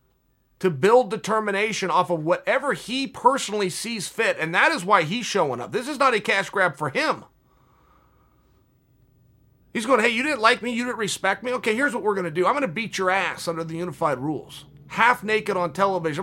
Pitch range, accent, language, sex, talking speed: 190-270 Hz, American, English, male, 205 wpm